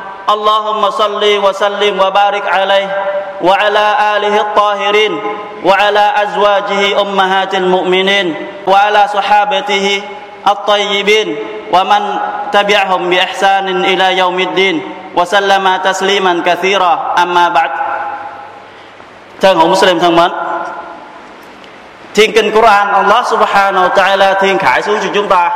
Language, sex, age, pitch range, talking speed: Vietnamese, male, 20-39, 180-205 Hz, 100 wpm